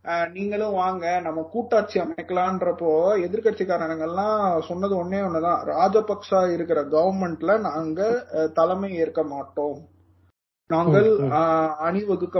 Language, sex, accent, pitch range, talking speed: Tamil, male, native, 165-235 Hz, 90 wpm